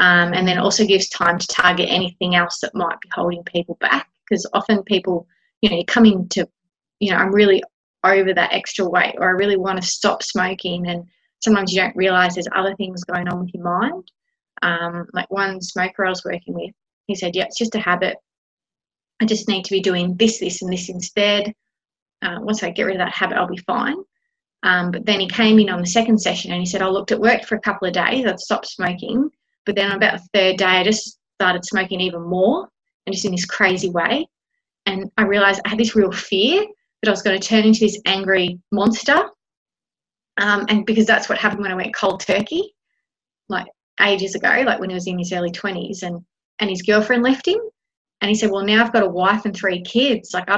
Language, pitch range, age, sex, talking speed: English, 180-220 Hz, 20-39, female, 230 wpm